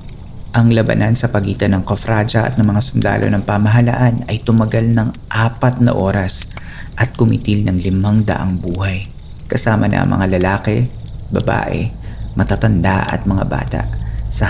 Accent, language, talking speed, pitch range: native, Filipino, 145 wpm, 95-115 Hz